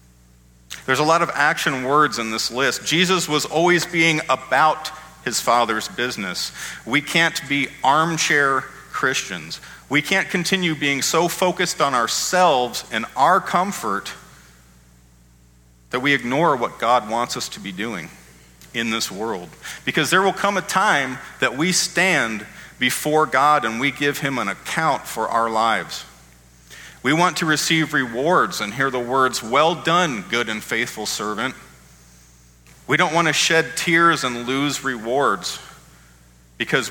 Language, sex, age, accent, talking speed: English, male, 40-59, American, 150 wpm